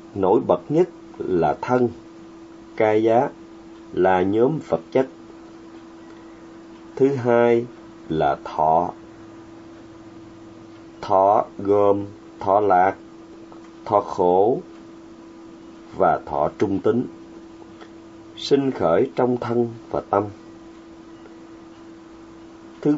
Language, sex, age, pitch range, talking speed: Vietnamese, male, 30-49, 110-150 Hz, 85 wpm